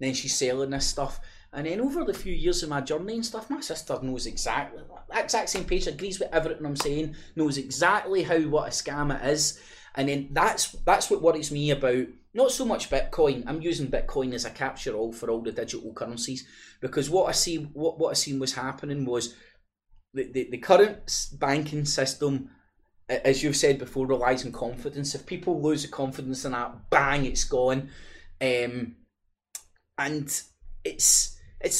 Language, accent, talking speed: English, British, 185 wpm